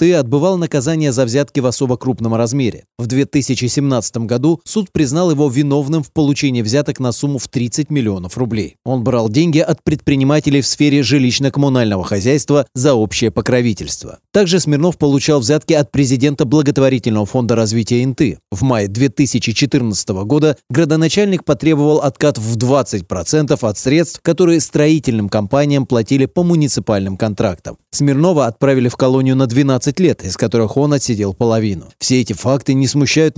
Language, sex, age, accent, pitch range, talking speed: Russian, male, 30-49, native, 120-150 Hz, 145 wpm